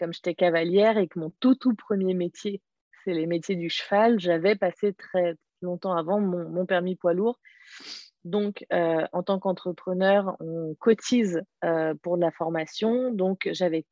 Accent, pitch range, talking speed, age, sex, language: French, 170-205 Hz, 170 wpm, 30-49, female, French